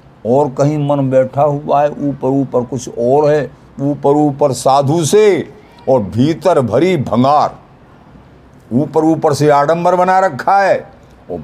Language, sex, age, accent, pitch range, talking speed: Hindi, male, 60-79, native, 100-145 Hz, 140 wpm